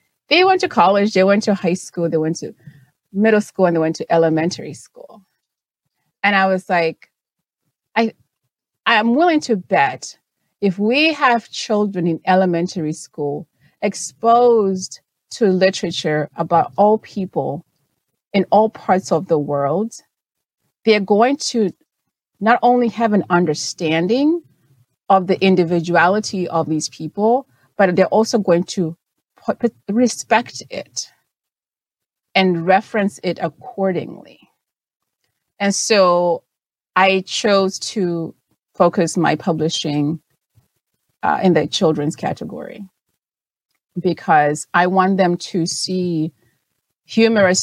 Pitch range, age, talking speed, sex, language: 165-210 Hz, 30-49, 120 wpm, female, English